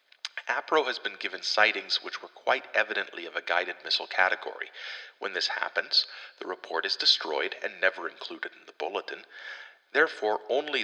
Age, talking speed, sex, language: 40-59, 160 wpm, male, English